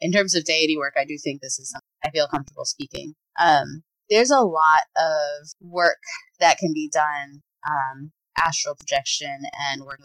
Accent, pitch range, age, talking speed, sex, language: American, 140-175 Hz, 20-39, 180 wpm, female, English